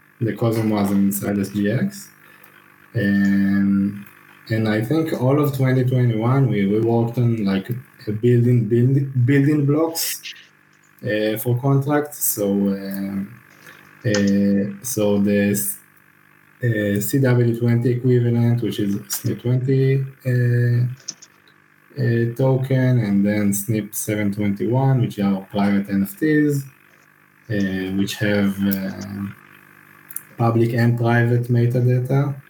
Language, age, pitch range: English, 20-39, 100-125 Hz